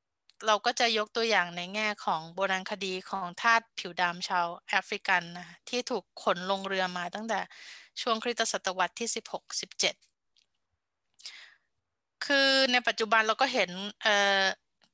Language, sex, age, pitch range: Thai, female, 20-39, 190-235 Hz